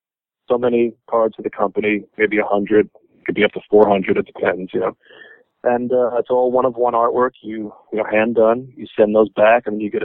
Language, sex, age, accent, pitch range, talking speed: English, male, 40-59, American, 110-165 Hz, 210 wpm